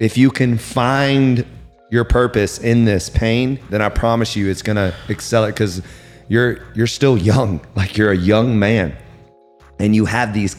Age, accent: 30-49, American